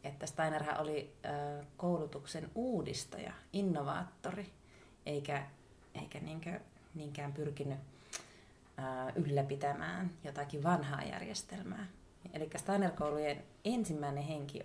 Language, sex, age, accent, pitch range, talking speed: Finnish, female, 30-49, native, 140-170 Hz, 70 wpm